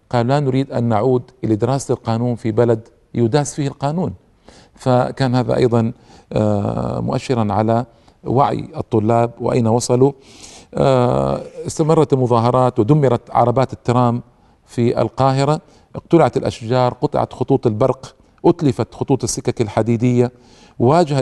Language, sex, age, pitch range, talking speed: Arabic, male, 50-69, 120-140 Hz, 110 wpm